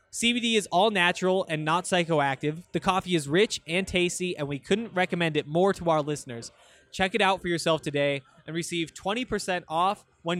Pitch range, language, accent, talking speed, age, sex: 160-195 Hz, English, American, 190 wpm, 20-39, male